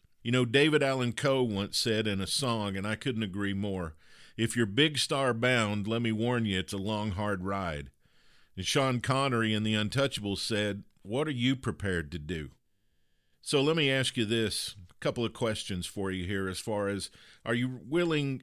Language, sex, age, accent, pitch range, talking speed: English, male, 50-69, American, 105-130 Hz, 200 wpm